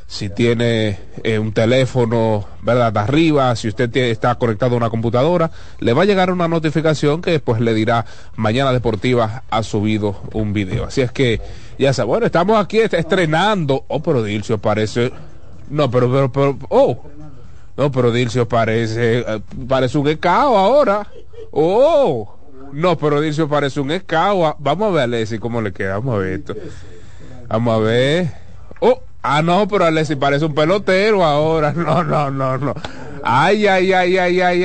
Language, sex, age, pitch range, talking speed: Spanish, male, 30-49, 115-170 Hz, 175 wpm